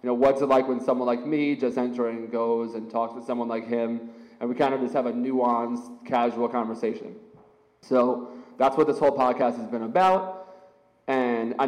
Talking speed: 205 wpm